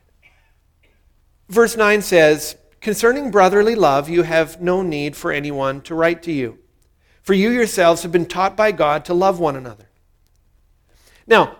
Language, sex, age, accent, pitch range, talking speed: English, male, 50-69, American, 145-210 Hz, 150 wpm